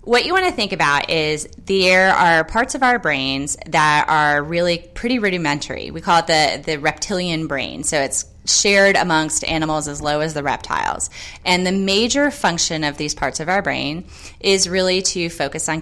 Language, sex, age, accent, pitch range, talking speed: English, female, 20-39, American, 150-185 Hz, 190 wpm